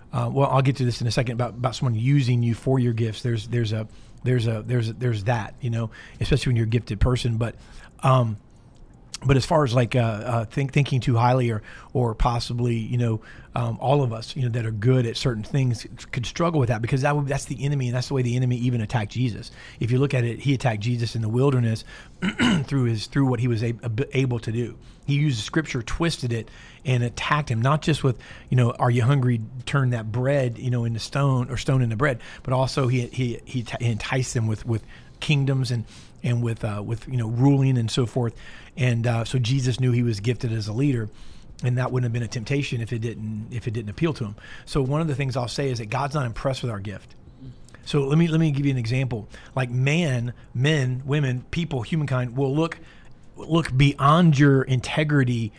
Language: English